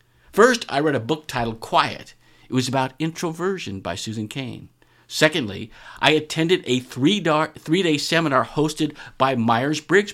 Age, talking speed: 50-69, 135 wpm